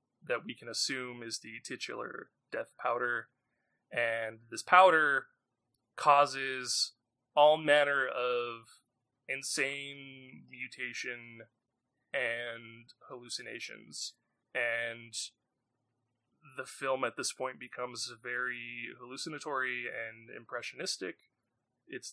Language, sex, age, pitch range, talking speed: English, male, 20-39, 120-140 Hz, 85 wpm